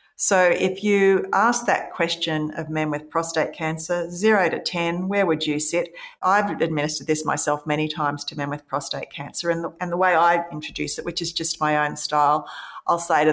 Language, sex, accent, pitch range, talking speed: English, female, Australian, 150-170 Hz, 205 wpm